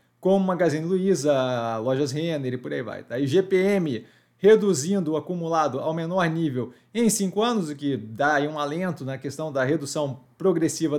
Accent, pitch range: Brazilian, 155-195 Hz